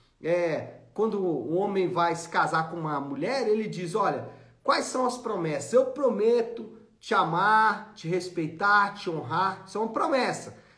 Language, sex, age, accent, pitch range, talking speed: Portuguese, male, 40-59, Brazilian, 190-260 Hz, 160 wpm